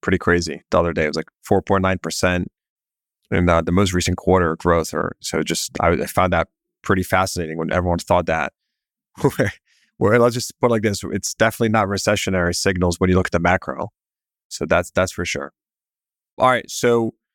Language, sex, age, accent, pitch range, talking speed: English, male, 30-49, American, 90-110 Hz, 205 wpm